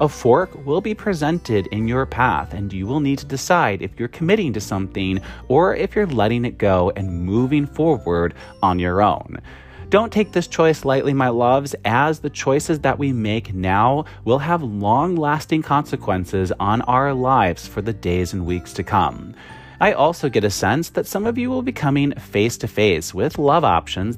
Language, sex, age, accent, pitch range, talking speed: English, male, 30-49, American, 100-165 Hz, 190 wpm